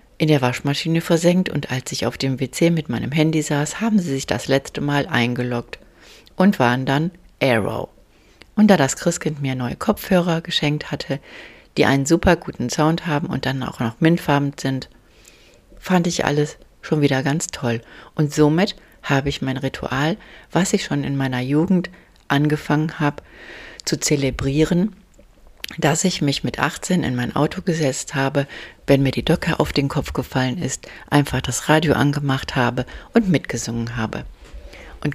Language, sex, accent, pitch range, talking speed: German, female, German, 135-165 Hz, 165 wpm